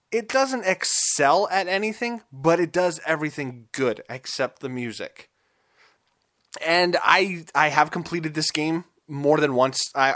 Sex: male